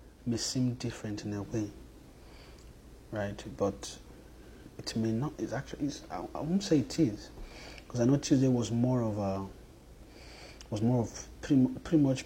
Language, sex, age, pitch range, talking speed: English, male, 30-49, 105-130 Hz, 170 wpm